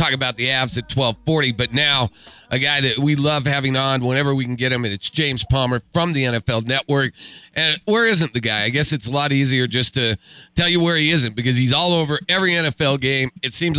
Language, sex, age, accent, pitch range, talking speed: English, male, 40-59, American, 130-175 Hz, 240 wpm